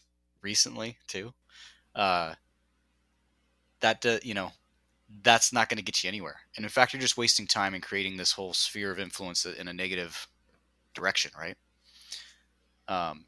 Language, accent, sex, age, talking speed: English, American, male, 30-49, 155 wpm